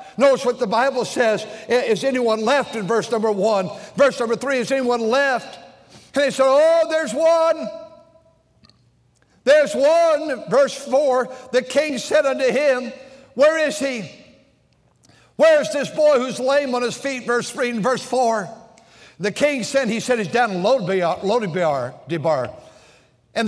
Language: English